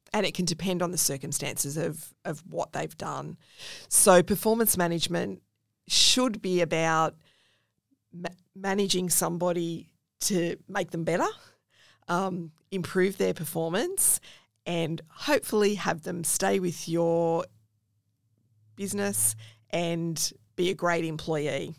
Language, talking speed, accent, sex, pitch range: English, 115 wpm, Australian, female, 160-180 Hz